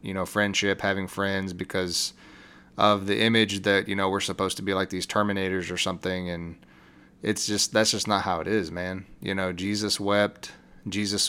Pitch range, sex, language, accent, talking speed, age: 95-110 Hz, male, English, American, 190 wpm, 20-39